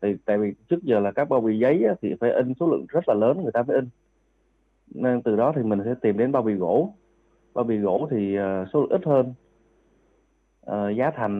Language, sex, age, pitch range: Vietnamese, male, 20-39, 105-140 Hz